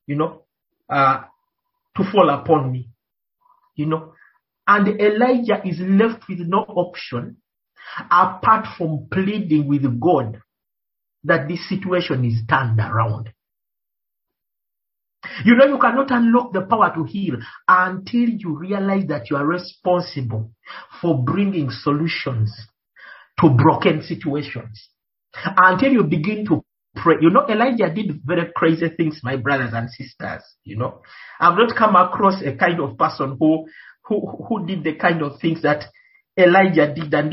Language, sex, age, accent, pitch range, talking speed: English, male, 50-69, Nigerian, 145-195 Hz, 140 wpm